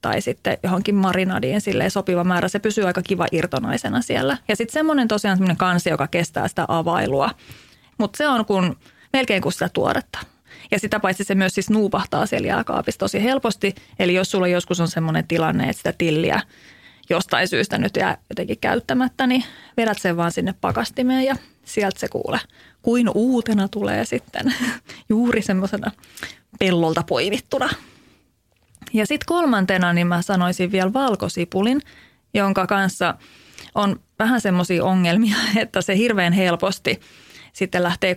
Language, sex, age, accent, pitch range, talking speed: Finnish, female, 30-49, native, 180-220 Hz, 150 wpm